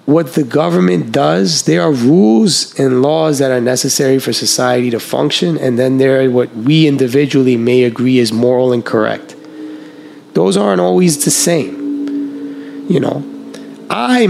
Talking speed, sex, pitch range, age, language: 155 wpm, male, 130-155 Hz, 30-49, English